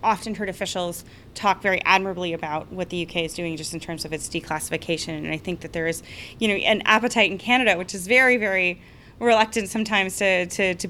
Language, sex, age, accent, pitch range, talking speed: English, female, 20-39, American, 180-225 Hz, 215 wpm